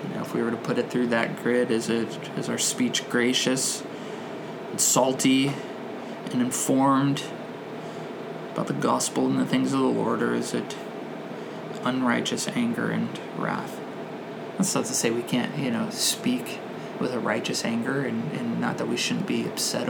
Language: English